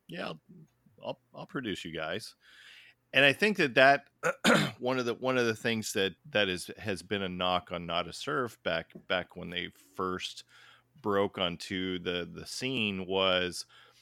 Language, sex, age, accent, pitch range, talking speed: English, male, 40-59, American, 90-115 Hz, 170 wpm